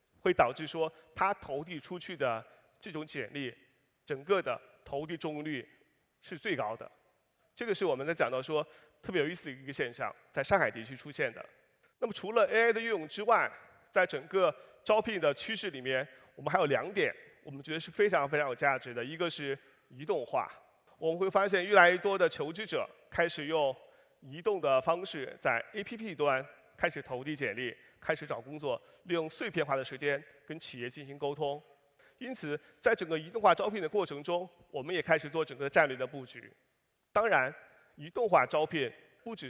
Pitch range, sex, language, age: 140-195 Hz, male, Chinese, 30-49